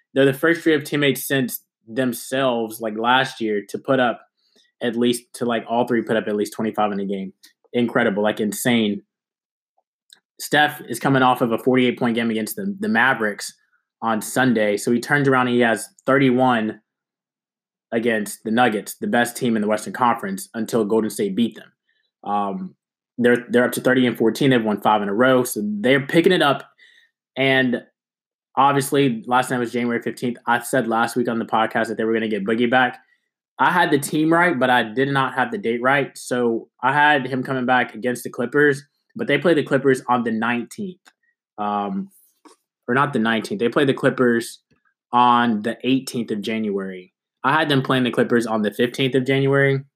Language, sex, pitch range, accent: English, male, 115-135 Hz, American